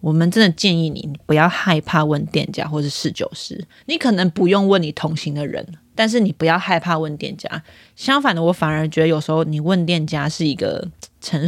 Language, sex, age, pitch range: Chinese, female, 20-39, 160-195 Hz